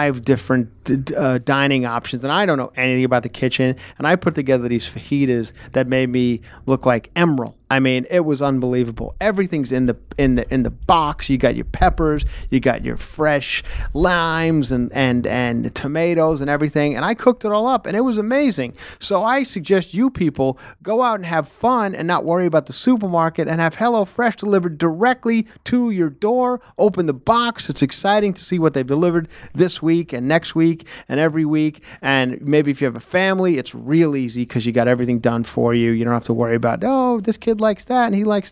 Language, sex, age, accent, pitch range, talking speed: English, male, 30-49, American, 130-180 Hz, 215 wpm